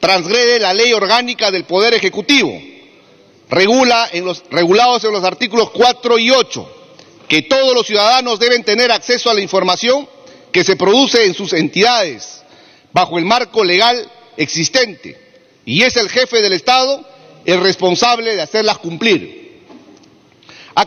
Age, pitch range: 40-59, 190-255 Hz